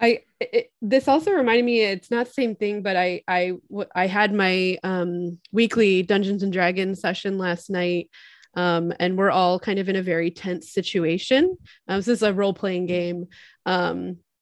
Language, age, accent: English, 20-39, American